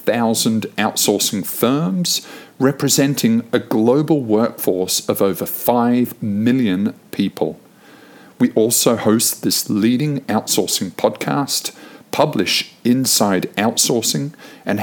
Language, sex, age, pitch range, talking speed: English, male, 50-69, 100-130 Hz, 95 wpm